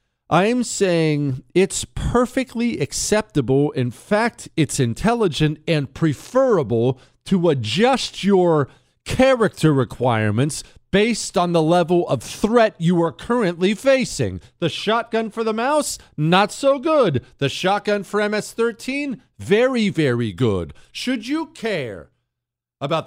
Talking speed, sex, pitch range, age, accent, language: 120 wpm, male, 120-200 Hz, 40-59, American, English